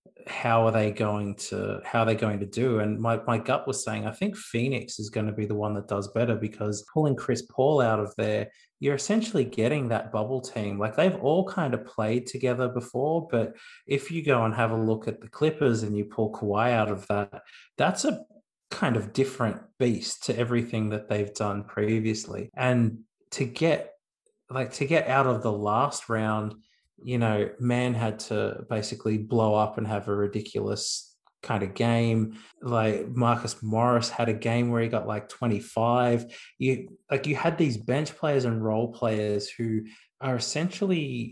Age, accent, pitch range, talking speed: 30-49, Australian, 110-130 Hz, 185 wpm